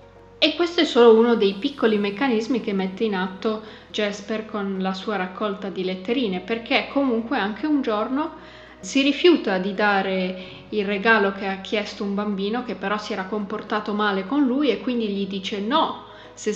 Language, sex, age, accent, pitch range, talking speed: Italian, female, 20-39, native, 200-235 Hz, 180 wpm